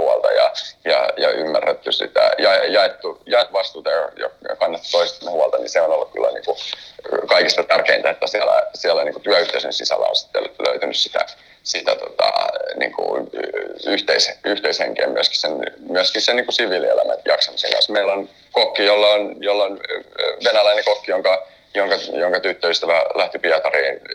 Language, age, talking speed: Finnish, 30-49, 145 wpm